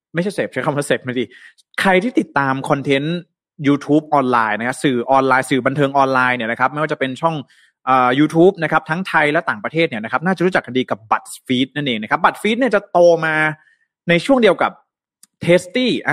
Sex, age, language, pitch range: male, 20-39, Thai, 135-165 Hz